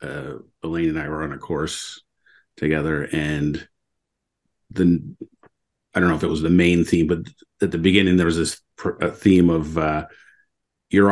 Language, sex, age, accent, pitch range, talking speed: English, male, 50-69, American, 75-85 Hz, 185 wpm